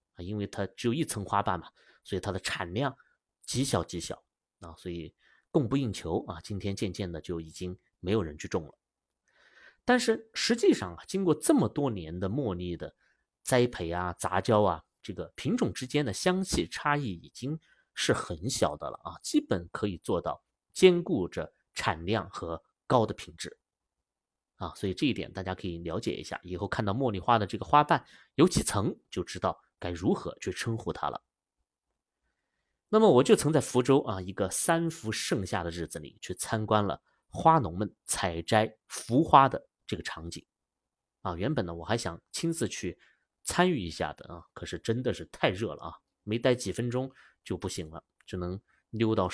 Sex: male